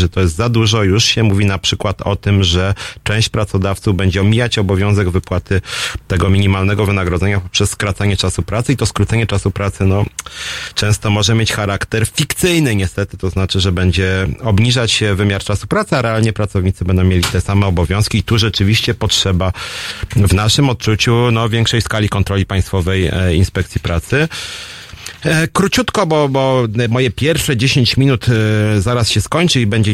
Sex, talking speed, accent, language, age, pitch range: male, 160 wpm, native, Polish, 40-59, 95-115 Hz